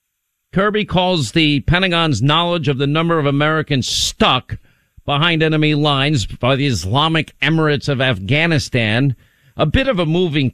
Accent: American